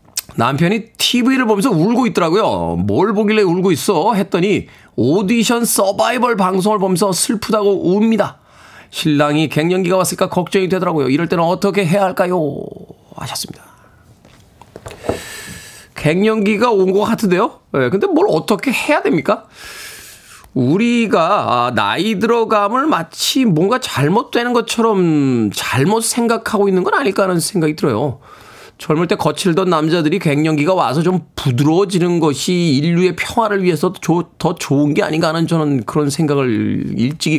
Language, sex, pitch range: Korean, male, 150-205 Hz